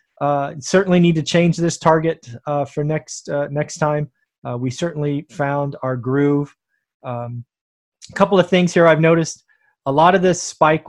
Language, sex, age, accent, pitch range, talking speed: English, male, 30-49, American, 130-155 Hz, 175 wpm